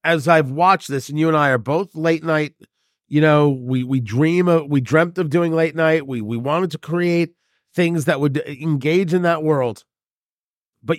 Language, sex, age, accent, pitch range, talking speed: English, male, 40-59, American, 145-195 Hz, 200 wpm